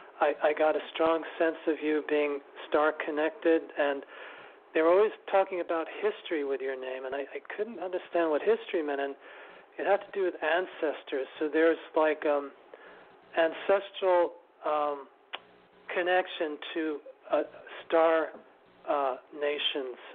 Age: 50-69